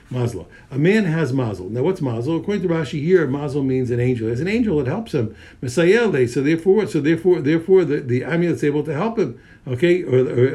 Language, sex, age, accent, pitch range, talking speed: English, male, 60-79, American, 120-165 Hz, 215 wpm